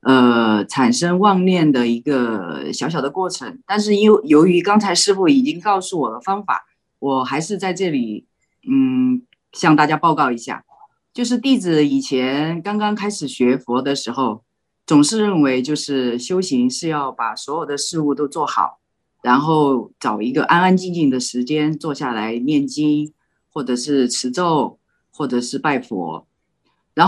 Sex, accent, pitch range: female, native, 135-190 Hz